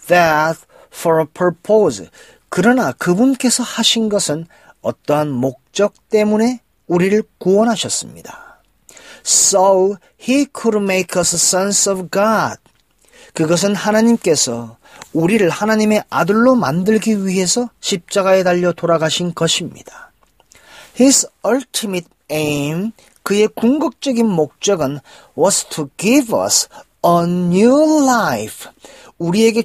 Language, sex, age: Korean, male, 40-59